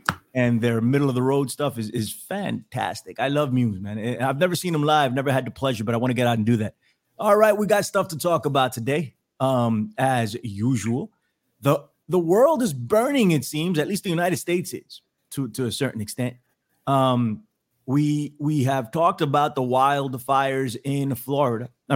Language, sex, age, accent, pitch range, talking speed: English, male, 30-49, American, 125-155 Hz, 190 wpm